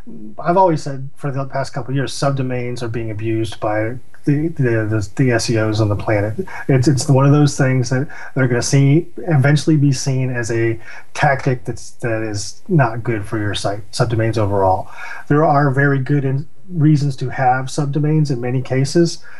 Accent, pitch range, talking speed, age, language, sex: American, 120-150 Hz, 185 wpm, 30-49, English, male